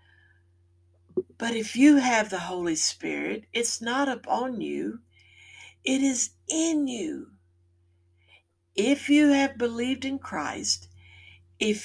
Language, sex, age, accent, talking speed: English, female, 60-79, American, 110 wpm